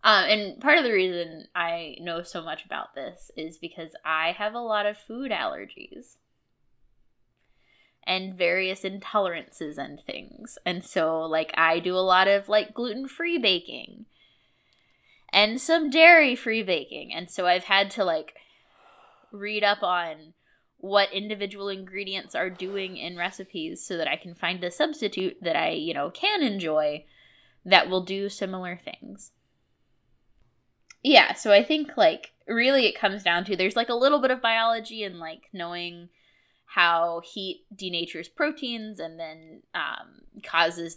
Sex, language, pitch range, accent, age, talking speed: female, English, 170-225 Hz, American, 10-29, 150 wpm